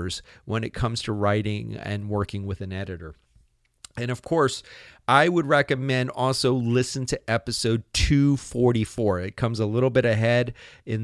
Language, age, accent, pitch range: English, 40-59, American, 105-125 Hz